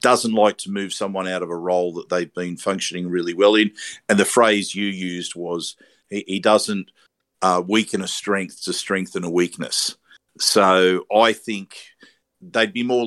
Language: English